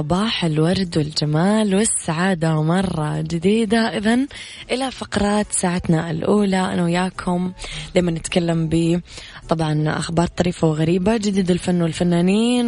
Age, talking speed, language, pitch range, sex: 20-39, 110 wpm, English, 160-185 Hz, female